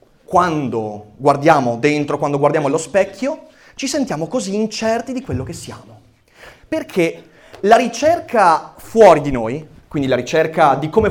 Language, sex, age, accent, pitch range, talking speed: Italian, male, 30-49, native, 140-225 Hz, 140 wpm